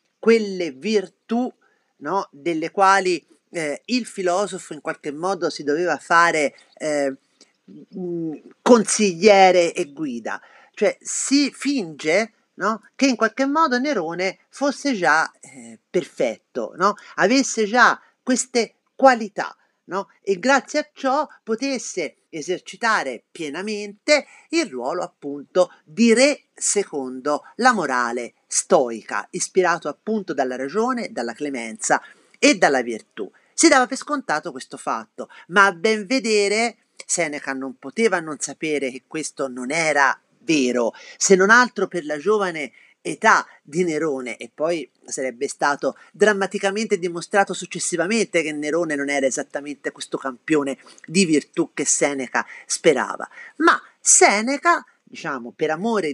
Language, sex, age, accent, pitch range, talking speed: Italian, male, 40-59, native, 155-250 Hz, 120 wpm